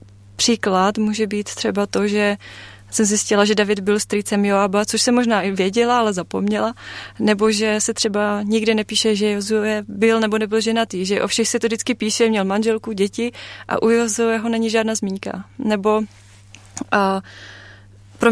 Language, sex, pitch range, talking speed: Czech, female, 195-225 Hz, 165 wpm